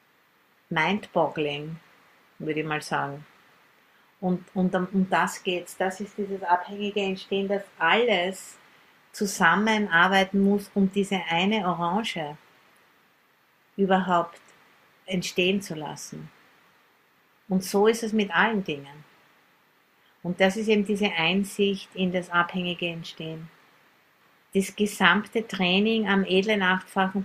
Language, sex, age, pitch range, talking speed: English, female, 50-69, 175-200 Hz, 110 wpm